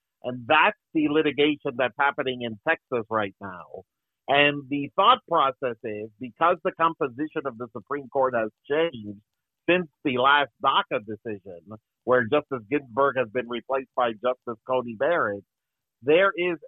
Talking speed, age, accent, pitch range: 150 wpm, 50-69, American, 125-150 Hz